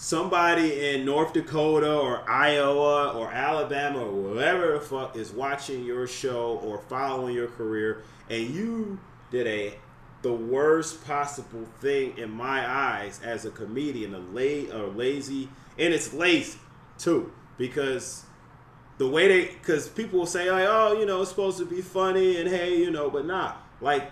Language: English